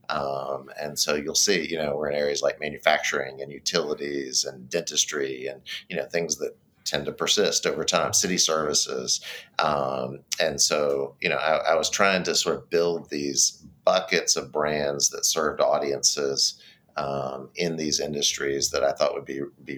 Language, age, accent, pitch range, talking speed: English, 40-59, American, 70-85 Hz, 175 wpm